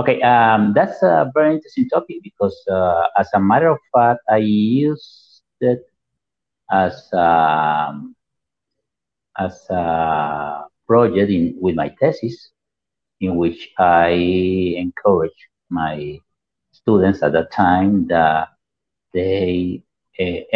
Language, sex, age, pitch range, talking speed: Spanish, male, 50-69, 85-120 Hz, 110 wpm